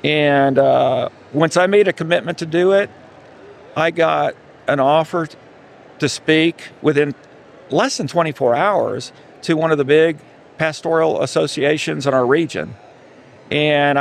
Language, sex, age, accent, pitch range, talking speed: English, male, 50-69, American, 145-170 Hz, 135 wpm